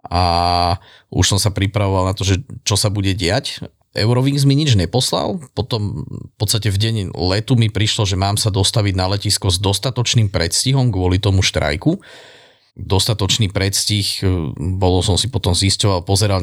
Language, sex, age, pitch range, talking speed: Slovak, male, 40-59, 95-110 Hz, 160 wpm